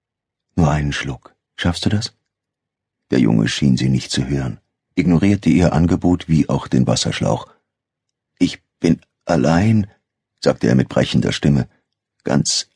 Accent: German